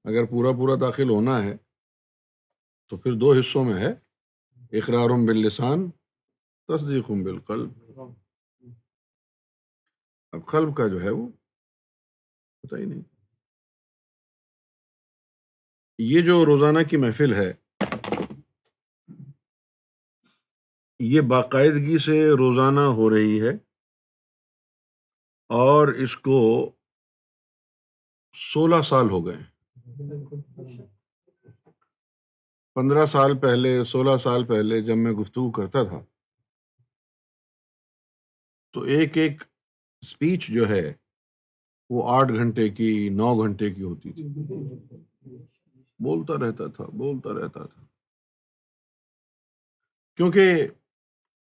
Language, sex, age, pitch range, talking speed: Urdu, male, 50-69, 115-150 Hz, 95 wpm